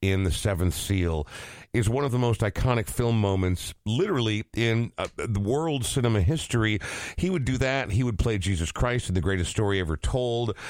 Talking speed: 190 wpm